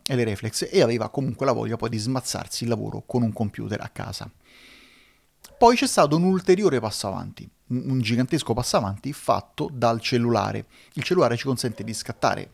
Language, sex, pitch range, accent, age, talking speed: Italian, male, 110-125 Hz, native, 30-49, 180 wpm